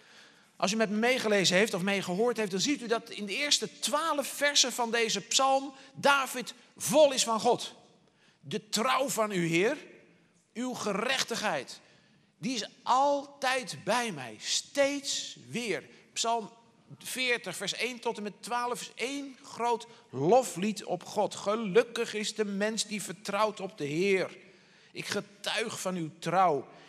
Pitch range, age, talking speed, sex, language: 185-240 Hz, 50-69, 155 wpm, male, Dutch